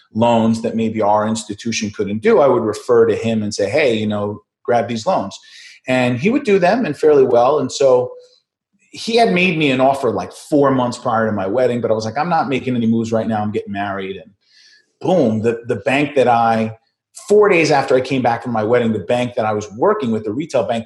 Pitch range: 110-135 Hz